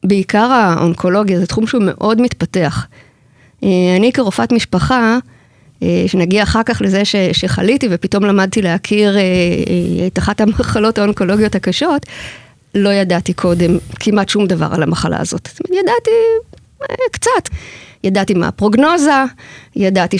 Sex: female